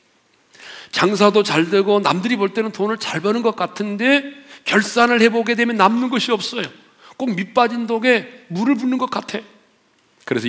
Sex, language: male, Korean